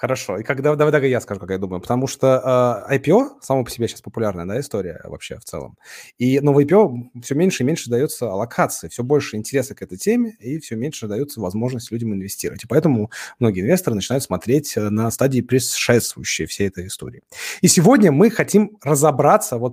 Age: 20-39